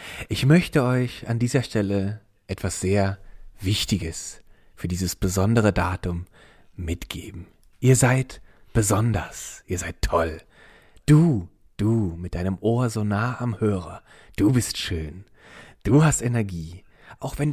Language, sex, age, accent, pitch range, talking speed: German, male, 40-59, German, 95-125 Hz, 125 wpm